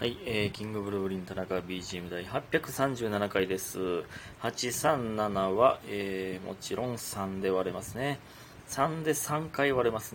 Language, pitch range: Japanese, 95-125 Hz